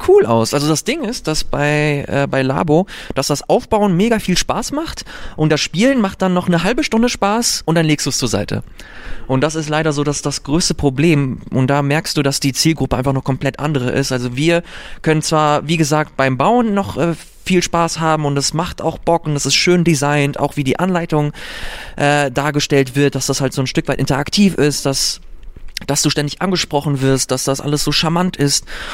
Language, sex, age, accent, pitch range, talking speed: German, male, 20-39, German, 135-165 Hz, 220 wpm